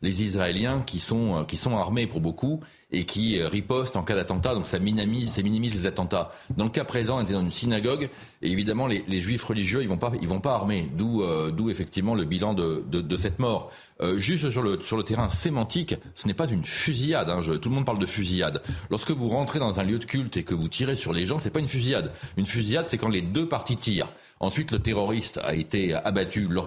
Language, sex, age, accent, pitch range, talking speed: French, male, 40-59, French, 90-120 Hz, 250 wpm